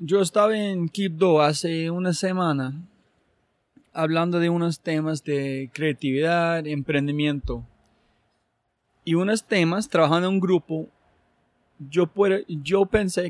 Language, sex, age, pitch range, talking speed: Spanish, male, 30-49, 145-175 Hz, 115 wpm